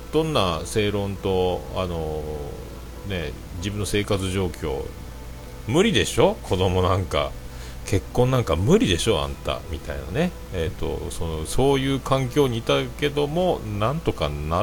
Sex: male